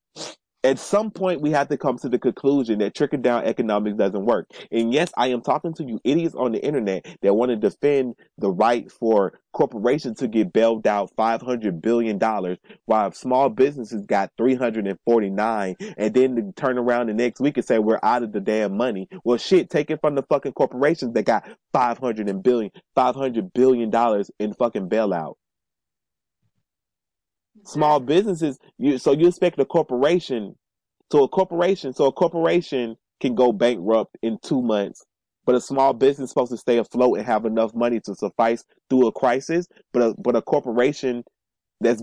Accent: American